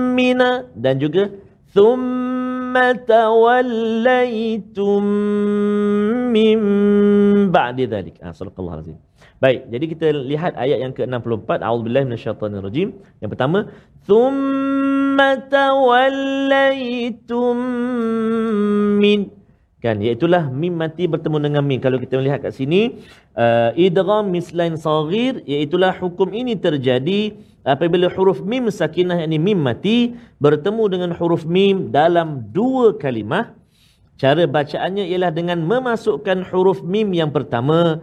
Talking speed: 90 wpm